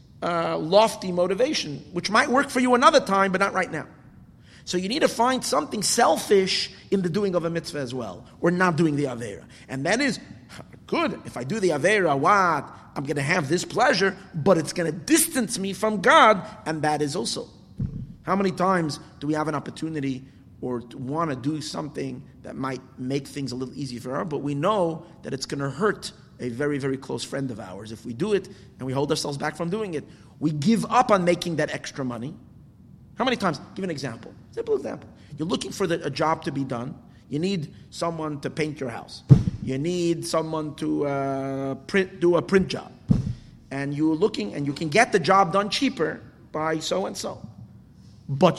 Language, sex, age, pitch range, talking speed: English, male, 30-49, 135-190 Hz, 210 wpm